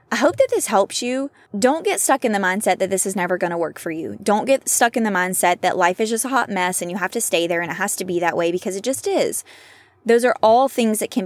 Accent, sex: American, female